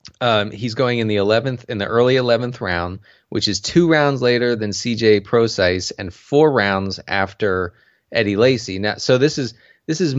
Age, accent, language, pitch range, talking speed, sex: 20-39, American, English, 100-125 Hz, 185 wpm, male